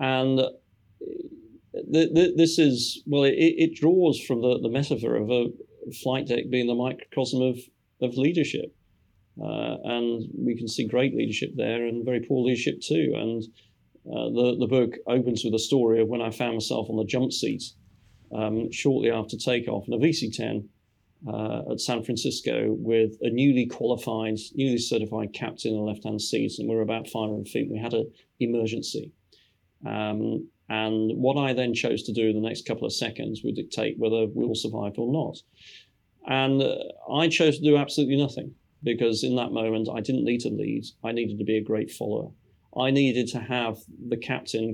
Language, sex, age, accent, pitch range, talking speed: English, male, 30-49, British, 110-130 Hz, 185 wpm